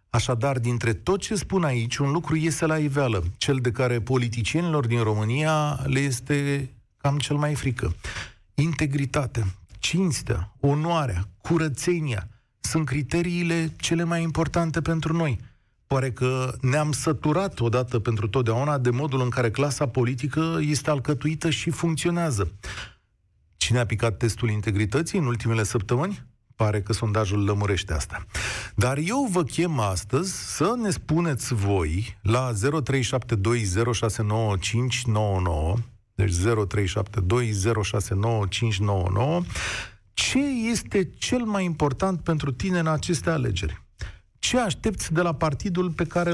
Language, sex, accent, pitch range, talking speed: Romanian, male, native, 110-155 Hz, 120 wpm